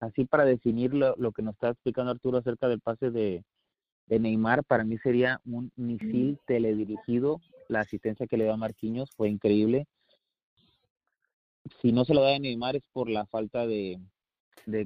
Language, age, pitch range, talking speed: Spanish, 30-49, 110-145 Hz, 175 wpm